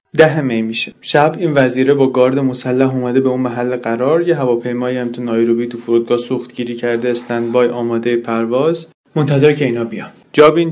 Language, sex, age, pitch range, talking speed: Persian, male, 30-49, 125-155 Hz, 175 wpm